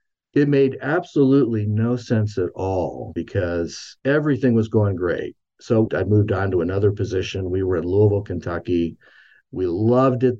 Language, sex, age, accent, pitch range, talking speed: English, male, 50-69, American, 90-120 Hz, 155 wpm